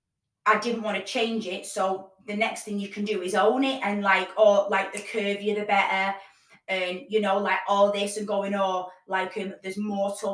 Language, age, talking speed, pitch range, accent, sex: English, 20-39, 215 wpm, 195-230 Hz, British, female